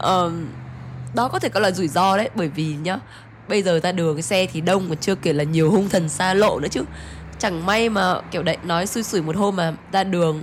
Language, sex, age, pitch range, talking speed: Vietnamese, female, 20-39, 165-220 Hz, 255 wpm